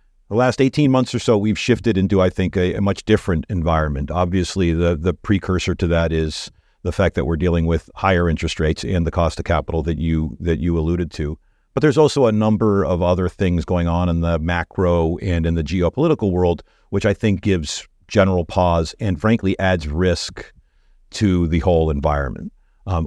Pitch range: 85-100 Hz